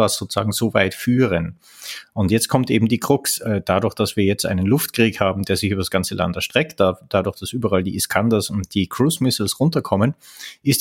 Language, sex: German, male